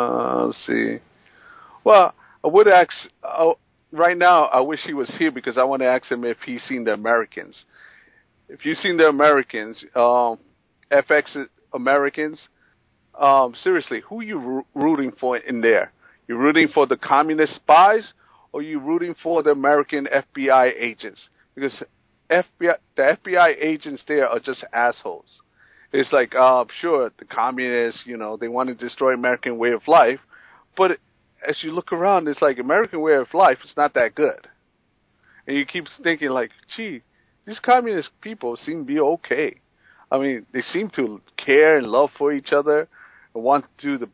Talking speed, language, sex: 170 wpm, English, male